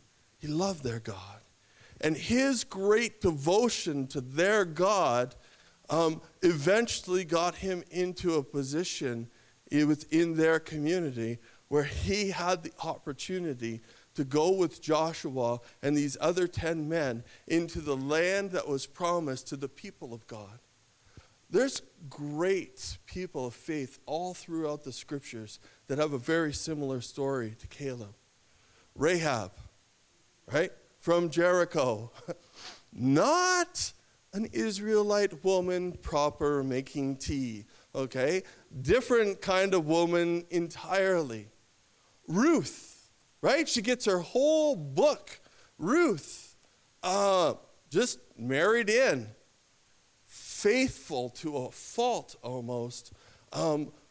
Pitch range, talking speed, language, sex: 125-185 Hz, 110 wpm, English, male